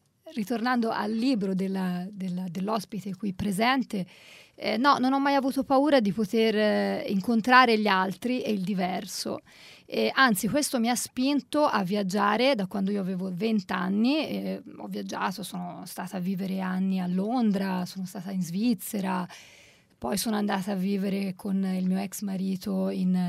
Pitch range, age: 190-240 Hz, 30-49